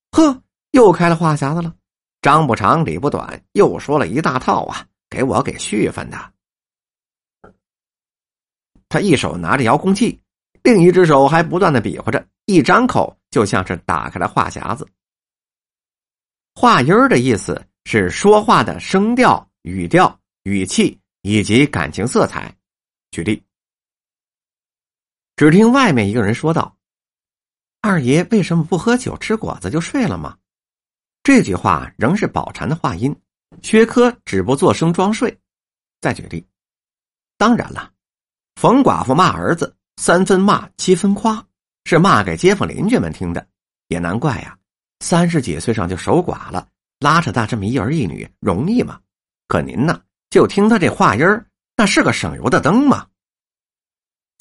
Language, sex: Chinese, male